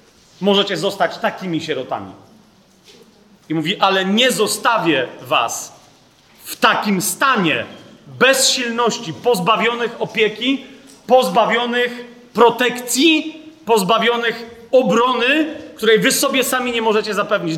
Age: 30-49